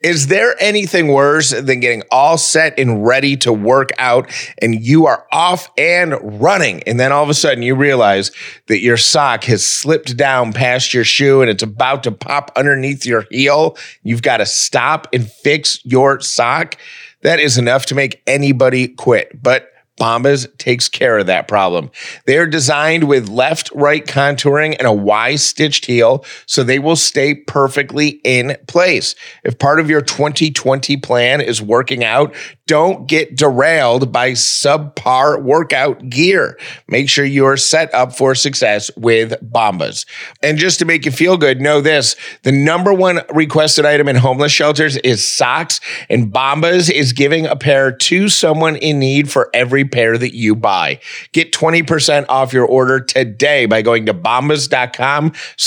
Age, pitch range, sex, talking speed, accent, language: 30-49, 125-155 Hz, male, 165 wpm, American, English